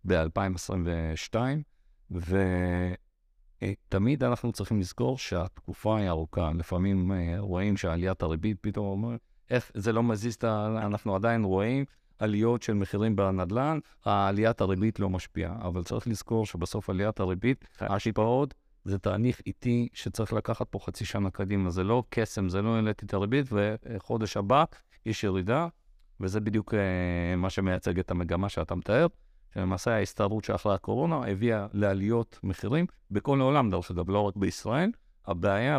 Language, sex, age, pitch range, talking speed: Hebrew, male, 50-69, 90-115 Hz, 135 wpm